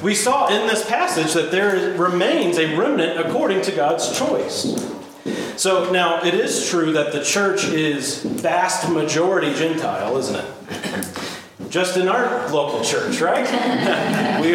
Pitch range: 140-190 Hz